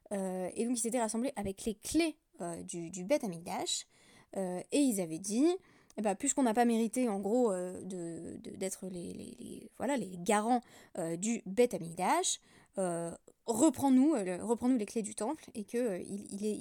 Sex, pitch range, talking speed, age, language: female, 195-255 Hz, 190 wpm, 20-39, French